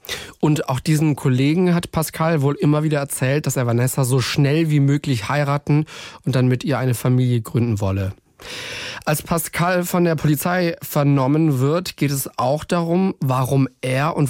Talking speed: 170 wpm